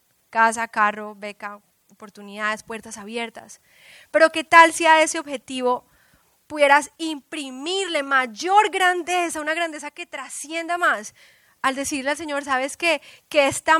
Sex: female